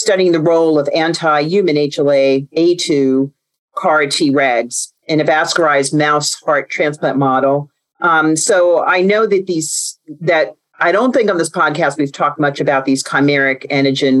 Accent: American